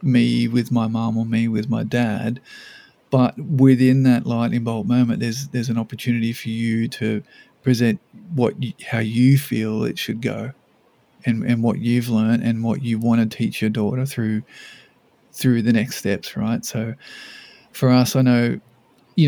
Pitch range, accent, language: 115-130 Hz, Australian, English